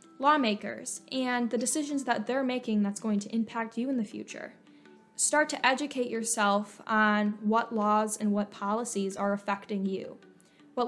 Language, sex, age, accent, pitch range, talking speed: English, female, 10-29, American, 205-245 Hz, 160 wpm